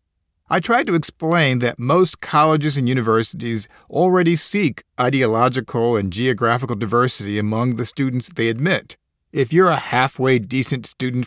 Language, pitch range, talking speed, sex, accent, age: English, 115-170 Hz, 140 wpm, male, American, 50-69